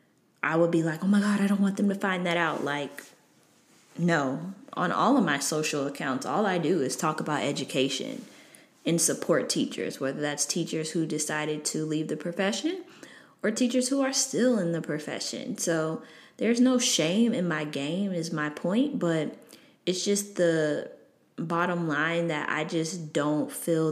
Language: English